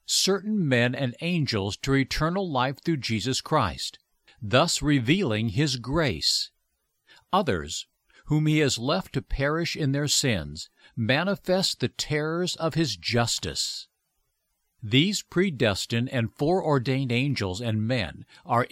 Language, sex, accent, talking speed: English, male, American, 120 wpm